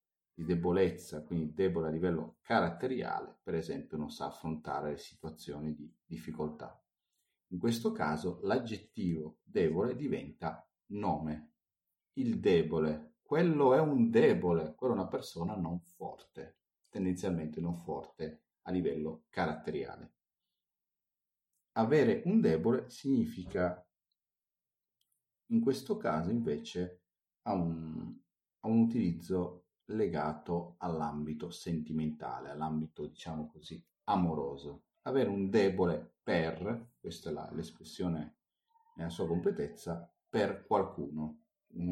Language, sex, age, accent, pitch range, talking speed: Italian, male, 40-59, native, 80-95 Hz, 105 wpm